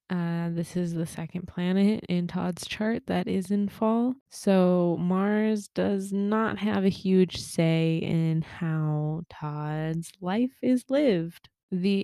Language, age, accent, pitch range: English, 20-39, American, 170-210 Hz